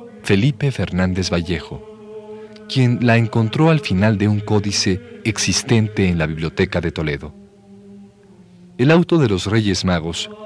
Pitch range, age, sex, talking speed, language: 95-140 Hz, 40-59, male, 130 wpm, Spanish